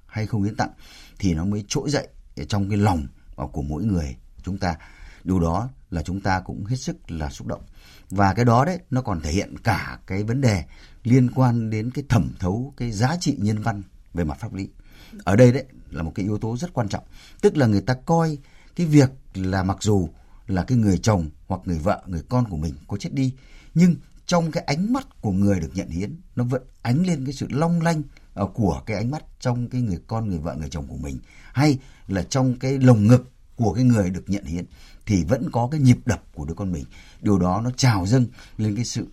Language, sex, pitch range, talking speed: Vietnamese, male, 85-130 Hz, 235 wpm